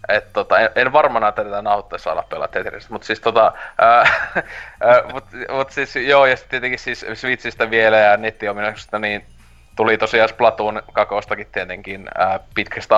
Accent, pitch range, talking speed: native, 100-120 Hz, 145 wpm